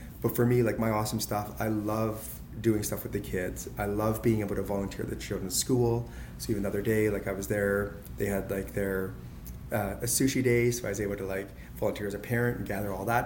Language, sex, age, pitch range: English, male, 20-39, 100-115 Hz